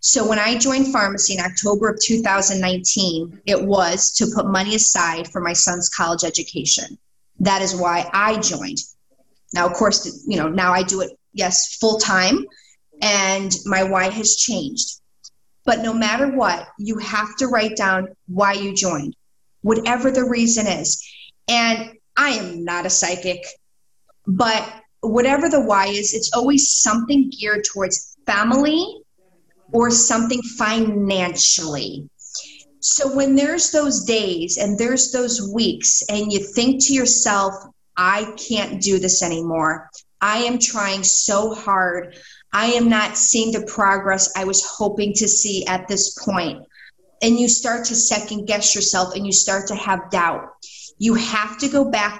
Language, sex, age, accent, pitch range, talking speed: English, female, 20-39, American, 190-230 Hz, 155 wpm